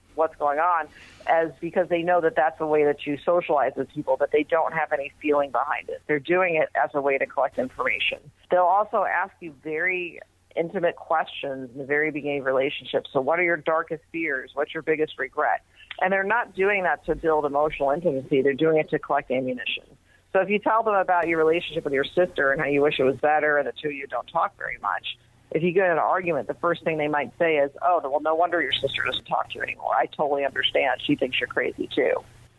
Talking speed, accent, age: 240 wpm, American, 50-69